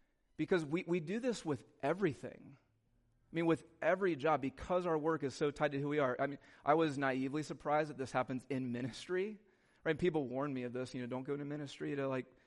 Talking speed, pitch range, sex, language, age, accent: 230 wpm, 130-160 Hz, male, English, 30-49, American